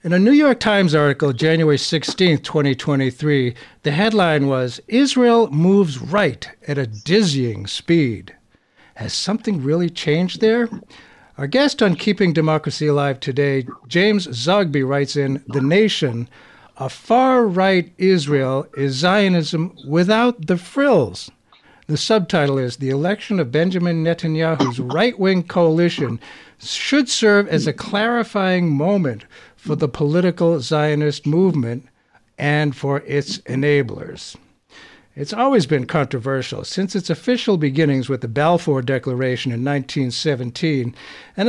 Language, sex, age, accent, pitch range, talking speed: English, male, 60-79, American, 140-190 Hz, 125 wpm